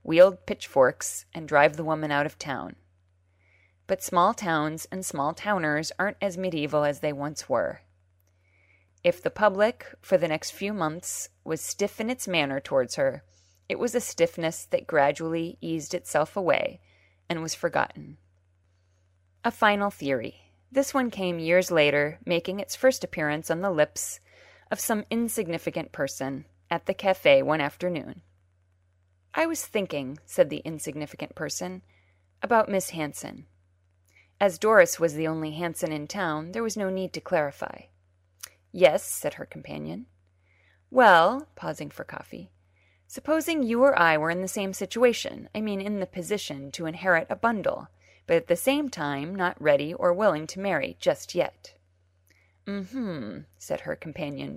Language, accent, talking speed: English, American, 155 wpm